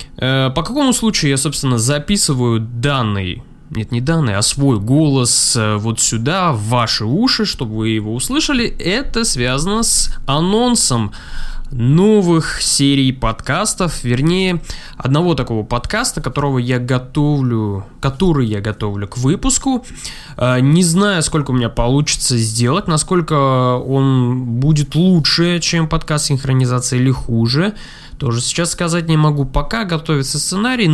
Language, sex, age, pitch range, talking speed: Russian, male, 20-39, 125-175 Hz, 125 wpm